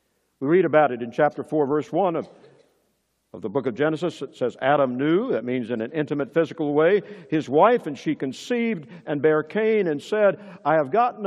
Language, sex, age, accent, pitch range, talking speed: English, male, 60-79, American, 140-190 Hz, 200 wpm